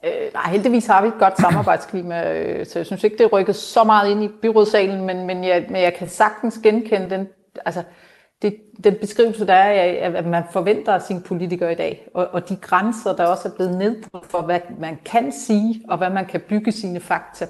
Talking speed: 215 wpm